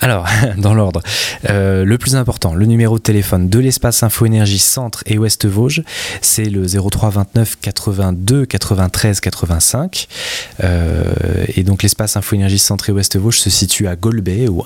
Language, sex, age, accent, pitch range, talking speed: French, male, 20-39, French, 95-110 Hz, 145 wpm